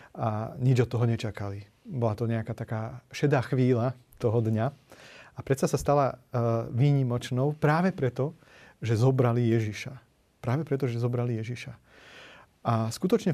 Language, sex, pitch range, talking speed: Slovak, male, 120-145 Hz, 135 wpm